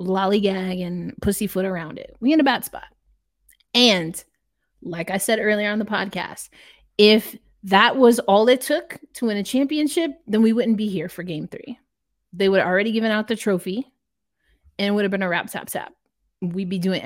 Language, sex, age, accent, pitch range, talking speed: English, female, 20-39, American, 190-245 Hz, 195 wpm